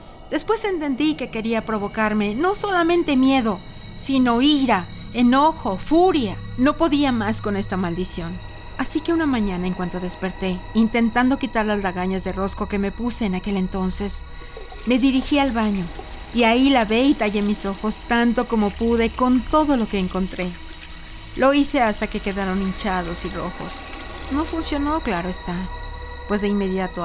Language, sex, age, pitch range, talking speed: Spanish, female, 40-59, 190-255 Hz, 155 wpm